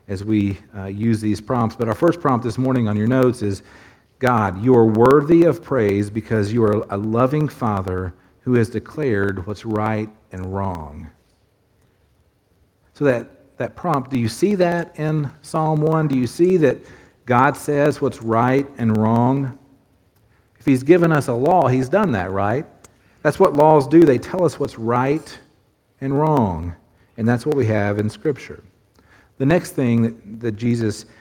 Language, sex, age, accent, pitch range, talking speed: English, male, 50-69, American, 100-130 Hz, 170 wpm